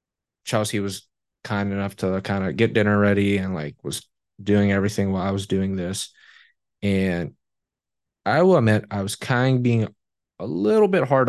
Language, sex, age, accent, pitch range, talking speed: English, male, 20-39, American, 100-115 Hz, 170 wpm